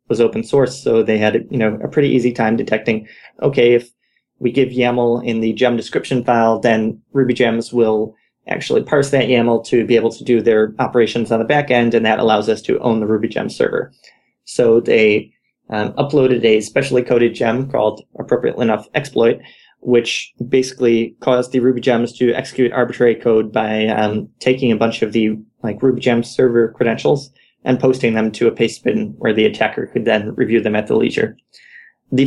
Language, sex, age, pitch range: English, male, 20-39, 110-125 Hz